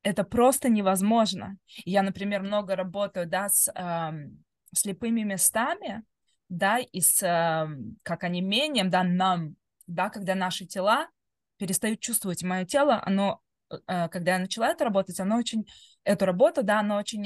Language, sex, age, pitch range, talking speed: Russian, female, 20-39, 175-215 Hz, 150 wpm